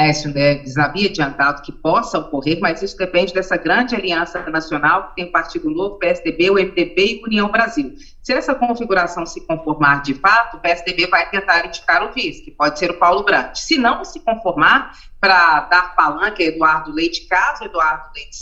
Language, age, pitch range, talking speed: Portuguese, 40-59, 165-230 Hz, 180 wpm